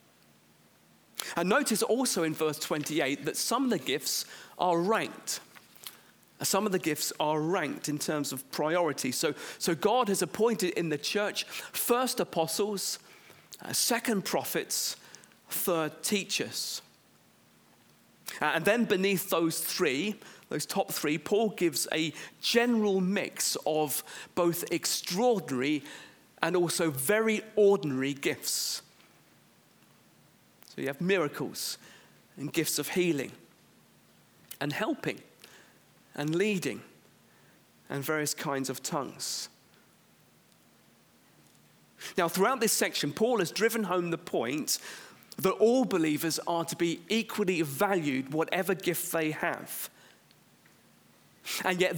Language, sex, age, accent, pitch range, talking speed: English, male, 40-59, British, 150-205 Hz, 115 wpm